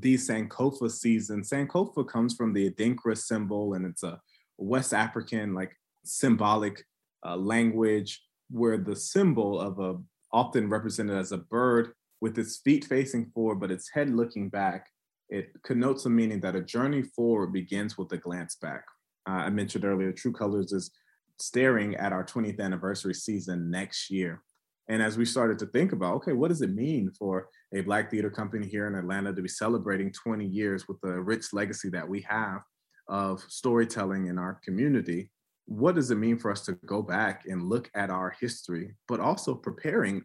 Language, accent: English, American